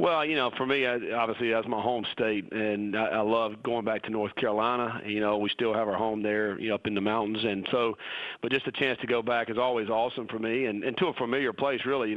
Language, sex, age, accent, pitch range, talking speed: English, male, 40-59, American, 110-120 Hz, 265 wpm